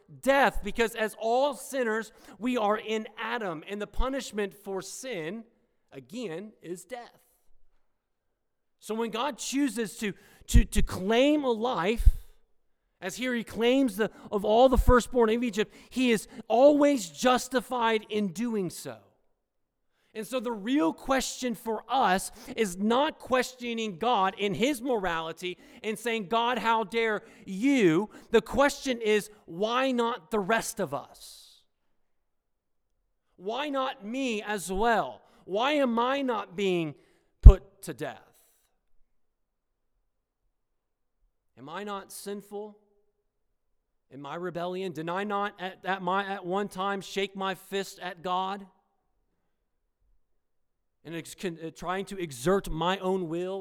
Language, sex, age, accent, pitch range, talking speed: English, male, 40-59, American, 175-230 Hz, 130 wpm